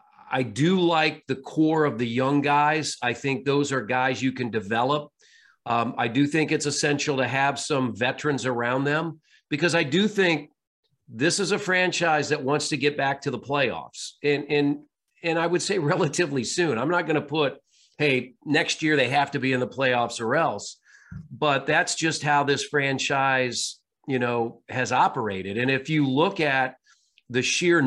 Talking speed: 185 wpm